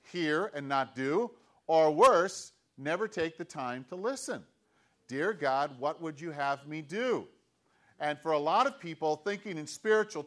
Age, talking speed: 40-59, 170 wpm